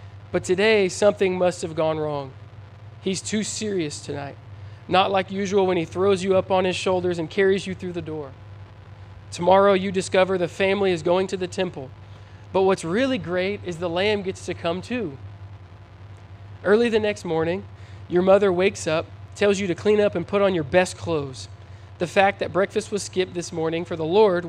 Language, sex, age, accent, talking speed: English, male, 20-39, American, 195 wpm